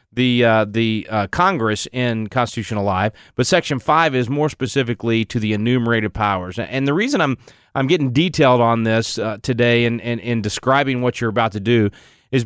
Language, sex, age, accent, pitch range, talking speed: English, male, 30-49, American, 115-145 Hz, 195 wpm